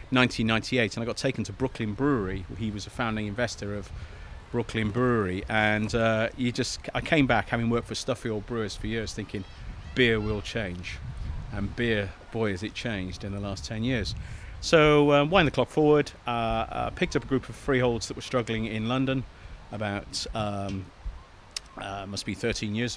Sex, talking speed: male, 190 wpm